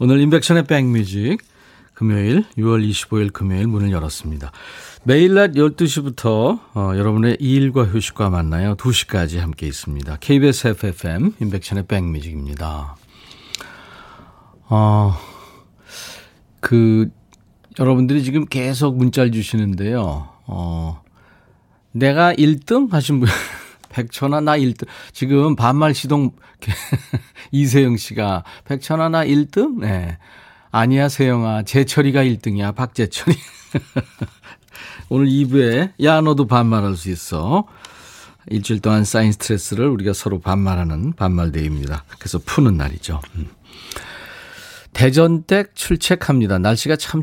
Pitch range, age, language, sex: 95-140 Hz, 40-59, Korean, male